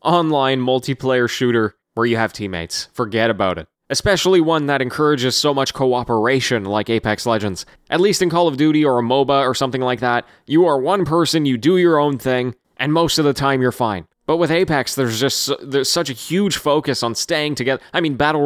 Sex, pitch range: male, 115-150 Hz